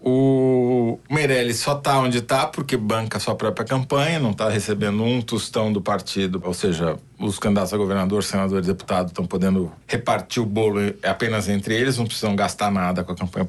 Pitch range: 100-125 Hz